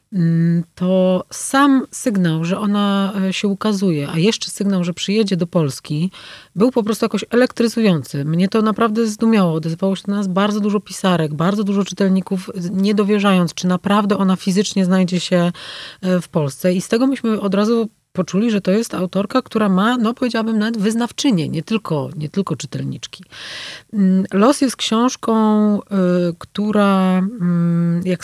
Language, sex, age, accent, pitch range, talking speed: Polish, female, 40-59, native, 180-215 Hz, 150 wpm